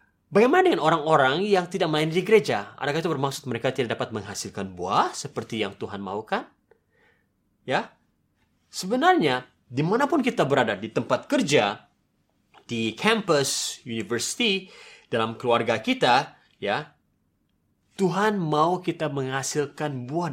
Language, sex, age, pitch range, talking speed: Indonesian, male, 30-49, 110-170 Hz, 120 wpm